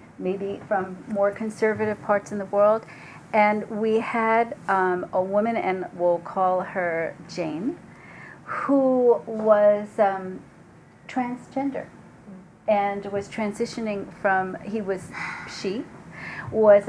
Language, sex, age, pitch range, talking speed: English, female, 40-59, 185-225 Hz, 110 wpm